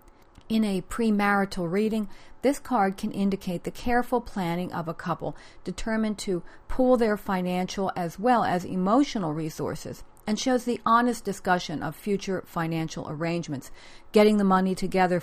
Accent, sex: American, female